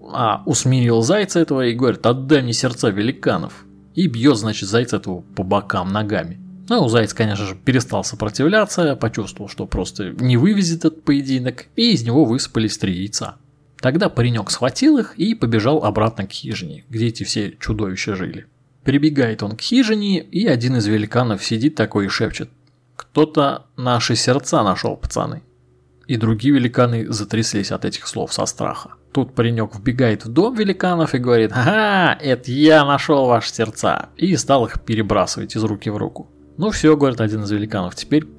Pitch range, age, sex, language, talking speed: 110-150 Hz, 20-39, male, Russian, 170 wpm